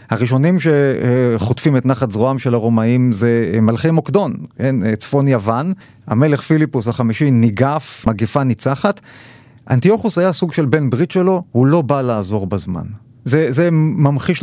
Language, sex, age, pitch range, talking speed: Hebrew, male, 30-49, 120-155 Hz, 140 wpm